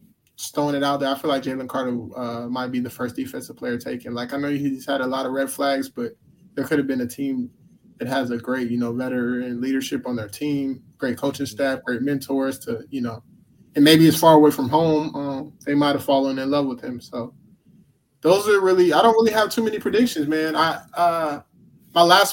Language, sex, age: English, male, 20-39